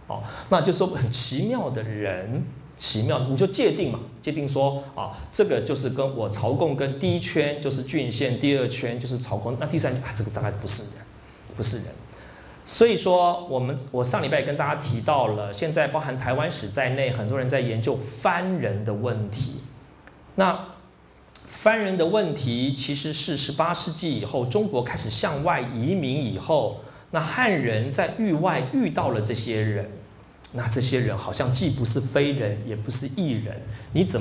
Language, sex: Chinese, male